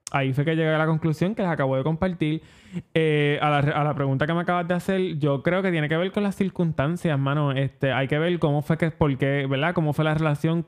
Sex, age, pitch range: male, 20-39, 140-170 Hz